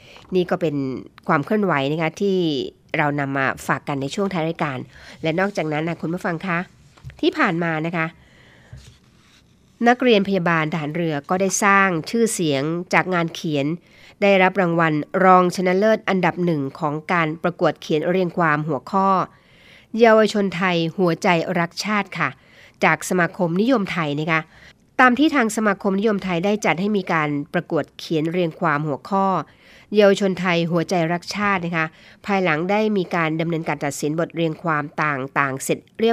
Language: Thai